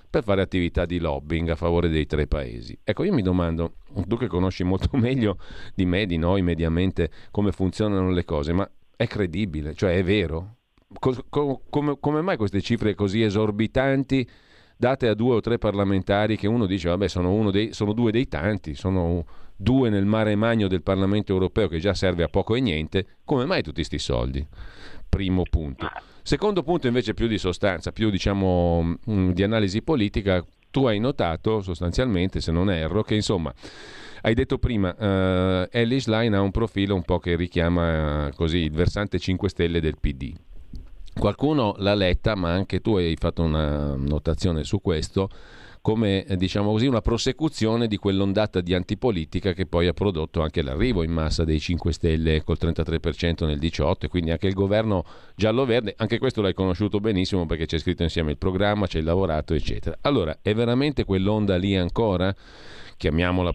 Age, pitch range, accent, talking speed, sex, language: 40-59, 85-105 Hz, native, 170 wpm, male, Italian